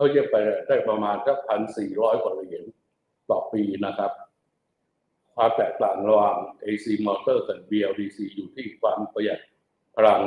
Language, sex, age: Thai, male, 60-79